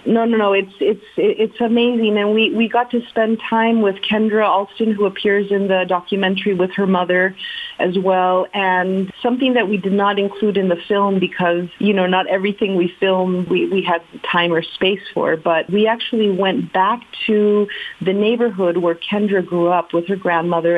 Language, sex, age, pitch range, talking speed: English, female, 40-59, 175-215 Hz, 190 wpm